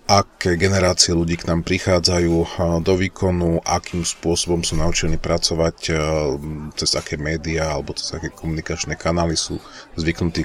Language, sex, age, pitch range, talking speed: Slovak, male, 40-59, 80-90 Hz, 130 wpm